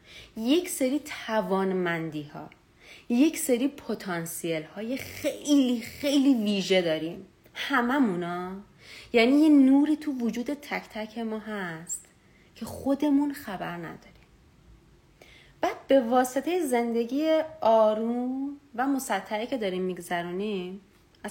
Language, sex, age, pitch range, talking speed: Persian, female, 30-49, 175-255 Hz, 100 wpm